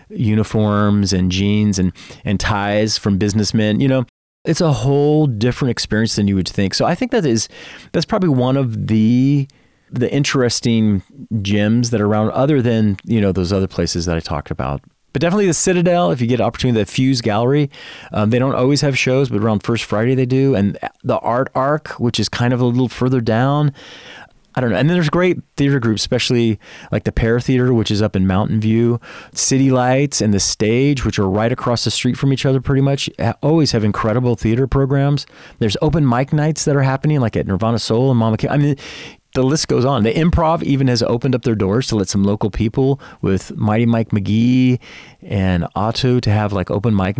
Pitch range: 105-135 Hz